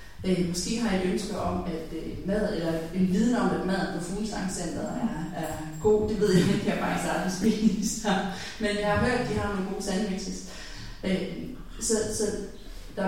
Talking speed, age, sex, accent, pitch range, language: 200 wpm, 30-49, female, native, 175-210 Hz, Danish